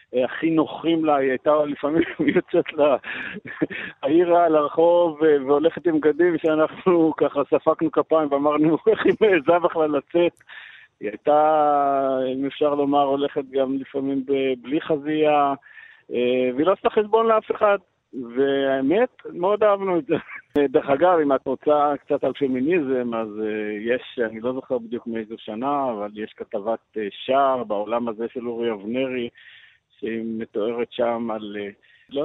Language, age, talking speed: Hebrew, 50-69, 140 wpm